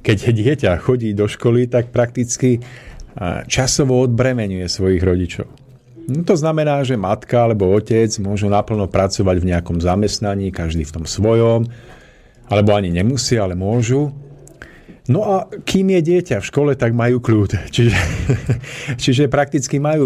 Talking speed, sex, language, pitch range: 140 wpm, male, Slovak, 95-125 Hz